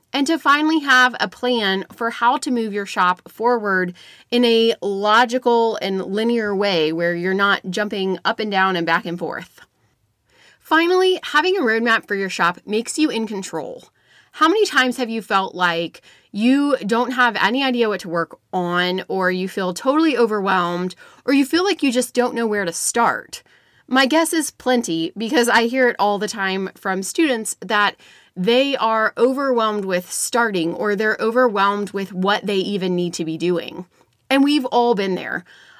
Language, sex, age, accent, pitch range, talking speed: English, female, 20-39, American, 190-250 Hz, 180 wpm